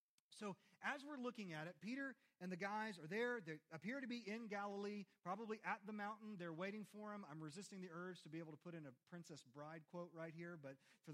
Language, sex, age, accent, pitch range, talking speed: English, male, 30-49, American, 155-220 Hz, 235 wpm